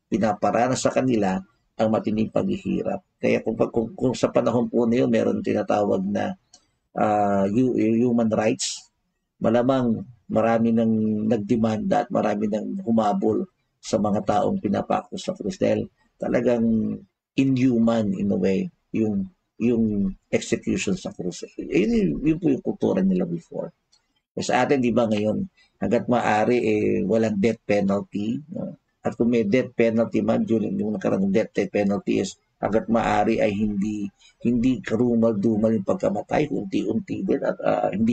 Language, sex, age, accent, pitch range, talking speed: Filipino, male, 50-69, native, 110-130 Hz, 140 wpm